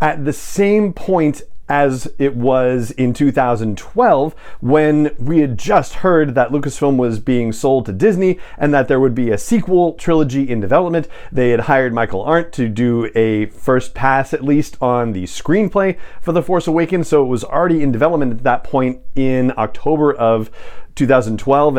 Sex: male